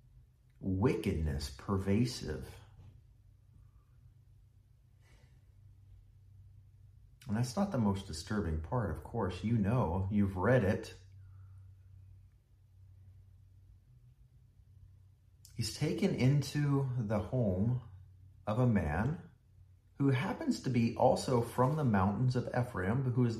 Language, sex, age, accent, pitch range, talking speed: English, male, 40-59, American, 90-115 Hz, 90 wpm